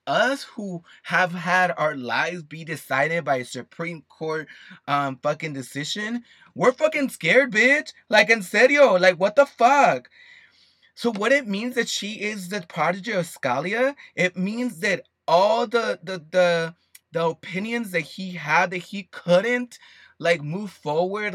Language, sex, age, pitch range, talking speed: English, male, 20-39, 160-215 Hz, 155 wpm